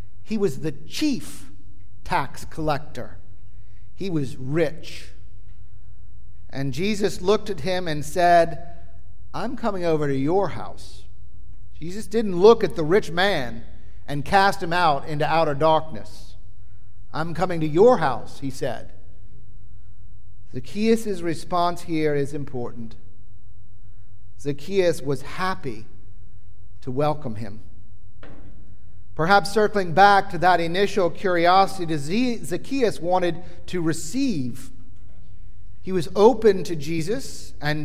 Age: 50-69